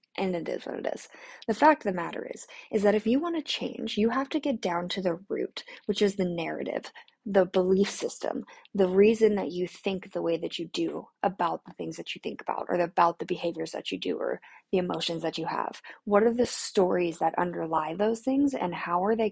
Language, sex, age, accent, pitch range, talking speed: English, female, 10-29, American, 175-220 Hz, 235 wpm